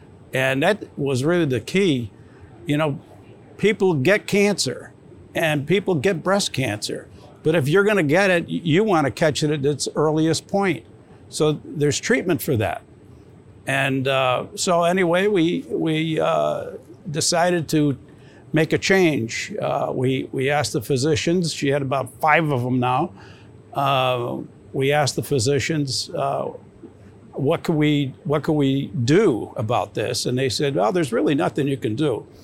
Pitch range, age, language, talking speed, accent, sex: 135-170 Hz, 60-79, English, 155 wpm, American, male